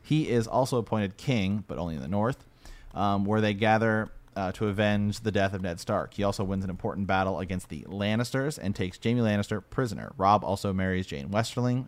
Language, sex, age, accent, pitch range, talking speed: English, male, 30-49, American, 95-120 Hz, 205 wpm